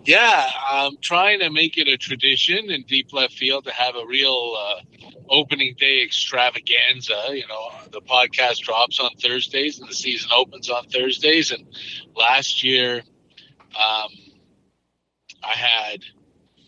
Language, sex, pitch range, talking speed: English, male, 110-140 Hz, 140 wpm